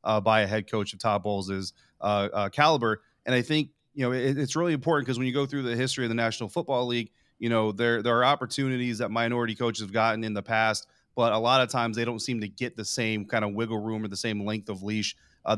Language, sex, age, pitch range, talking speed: English, male, 30-49, 110-125 Hz, 265 wpm